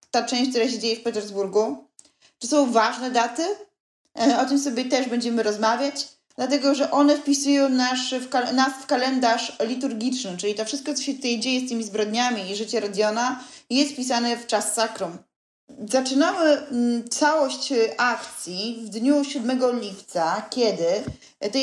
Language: Polish